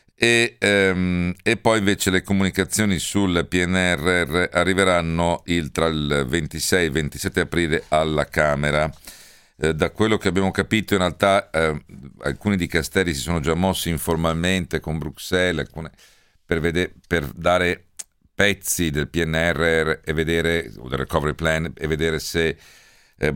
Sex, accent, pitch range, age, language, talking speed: male, native, 80-95 Hz, 50-69, Italian, 130 wpm